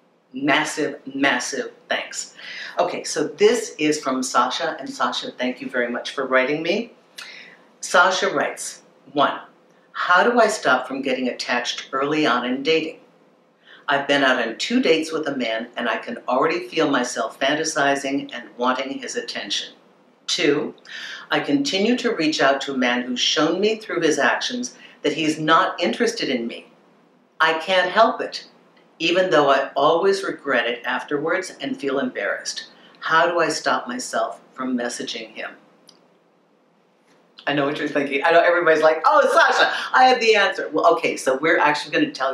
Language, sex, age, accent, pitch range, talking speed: English, female, 50-69, American, 135-170 Hz, 165 wpm